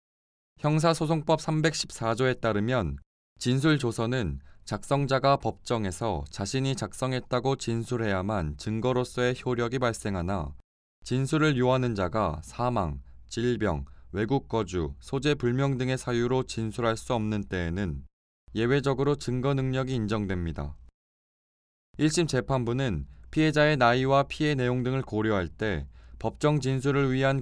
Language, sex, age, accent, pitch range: Korean, male, 20-39, native, 95-130 Hz